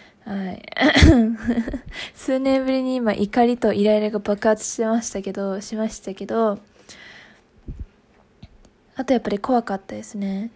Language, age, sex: Japanese, 20-39, female